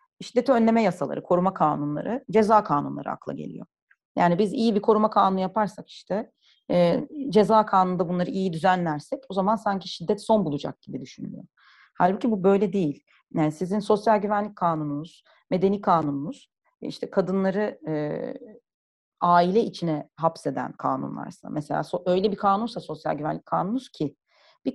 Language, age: Turkish, 40-59